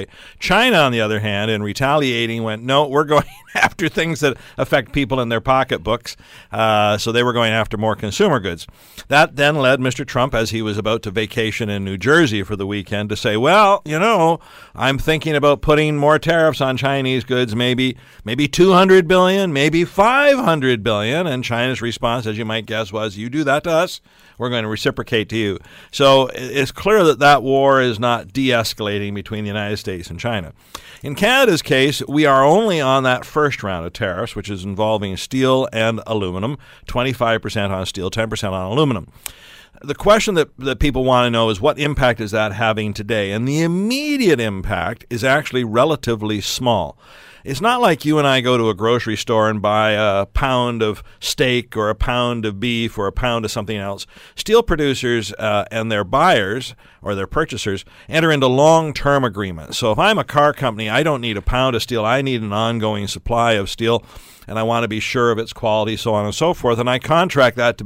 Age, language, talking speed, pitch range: 50-69, English, 205 wpm, 110-140 Hz